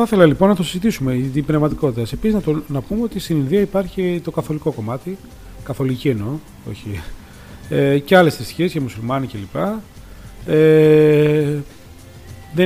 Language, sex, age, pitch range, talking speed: Greek, male, 40-59, 115-160 Hz, 150 wpm